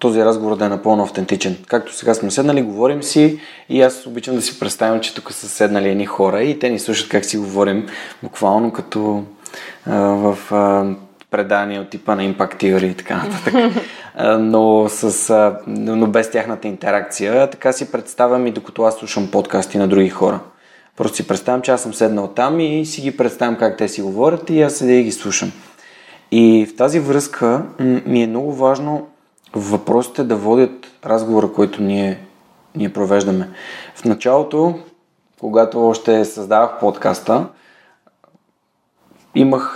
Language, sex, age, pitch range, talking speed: Bulgarian, male, 20-39, 100-125 Hz, 160 wpm